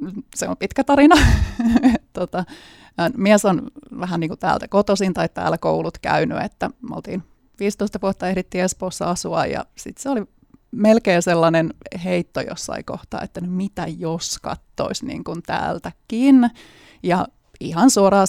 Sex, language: female, Finnish